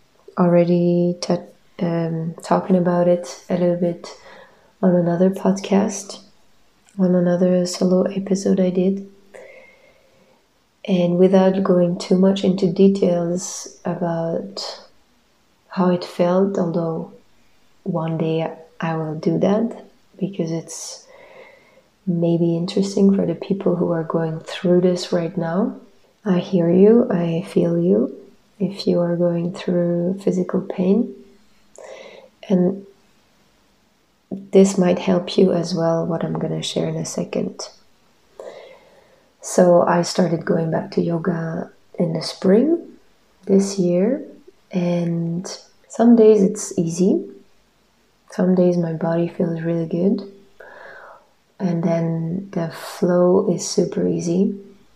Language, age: English, 20-39